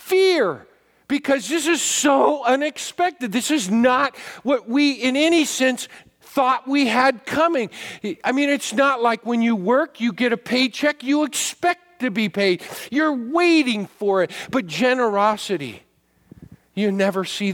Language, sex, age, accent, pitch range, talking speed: English, male, 50-69, American, 235-300 Hz, 150 wpm